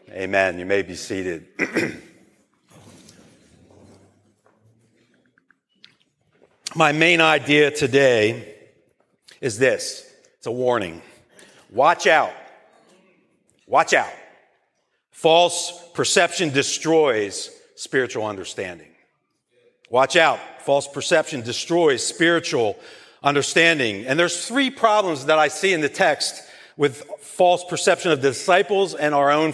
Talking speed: 100 wpm